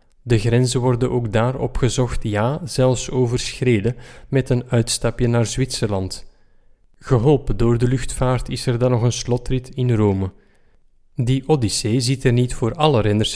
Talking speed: 155 wpm